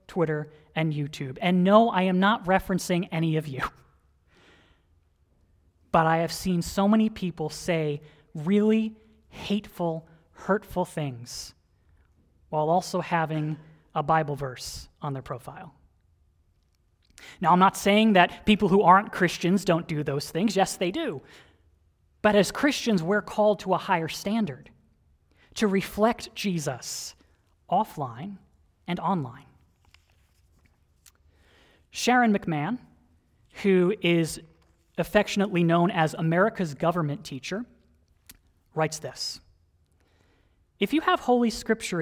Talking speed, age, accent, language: 115 wpm, 20-39, American, English